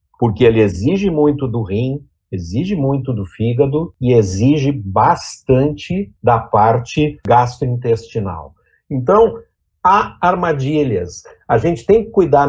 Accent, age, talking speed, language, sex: Brazilian, 60-79, 115 wpm, Portuguese, male